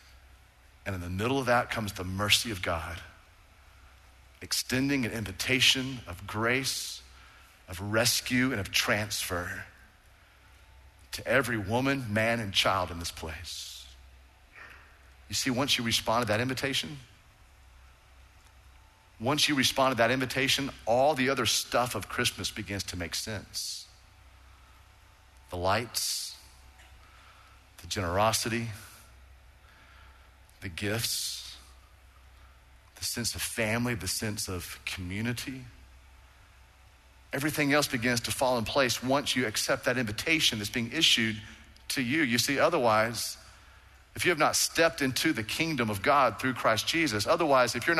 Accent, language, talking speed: American, English, 130 wpm